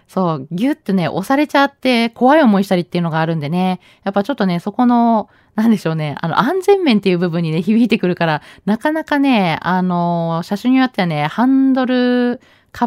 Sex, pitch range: female, 165-230 Hz